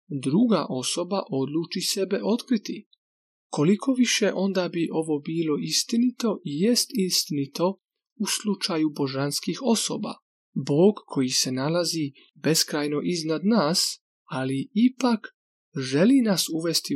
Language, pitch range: Croatian, 150-210 Hz